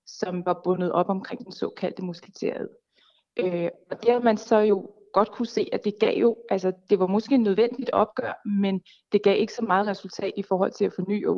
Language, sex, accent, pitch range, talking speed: Danish, female, native, 190-230 Hz, 215 wpm